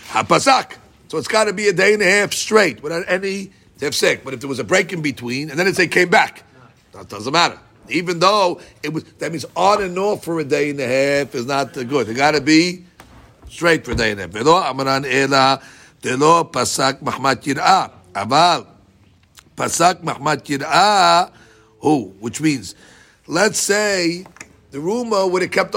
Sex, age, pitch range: male, 50-69, 140-185 Hz